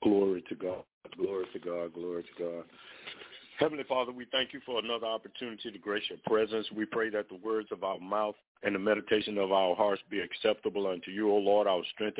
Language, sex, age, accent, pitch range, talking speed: English, male, 50-69, American, 105-120 Hz, 210 wpm